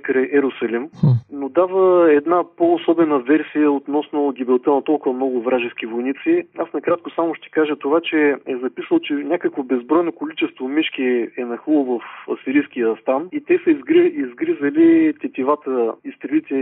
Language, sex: Bulgarian, male